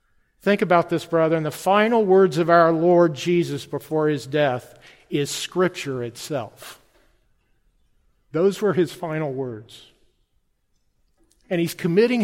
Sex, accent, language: male, American, English